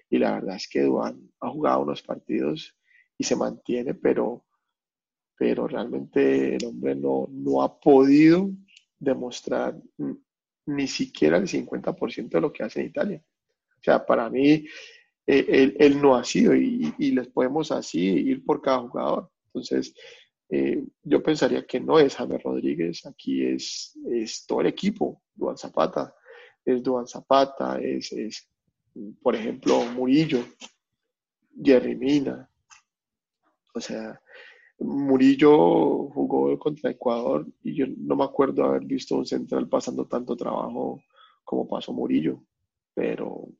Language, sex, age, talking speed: Spanish, male, 30-49, 140 wpm